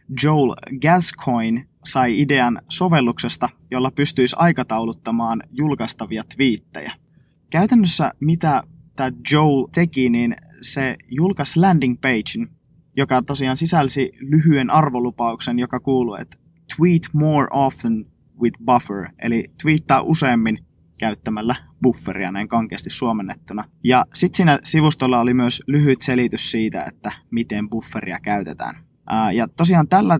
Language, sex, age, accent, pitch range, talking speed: Finnish, male, 20-39, native, 120-155 Hz, 115 wpm